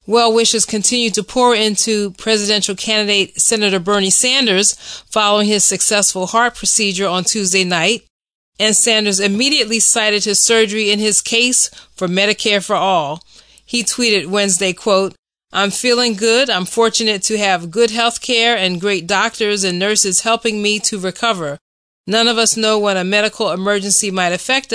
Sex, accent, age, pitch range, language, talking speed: female, American, 30-49, 190-220 Hz, English, 160 wpm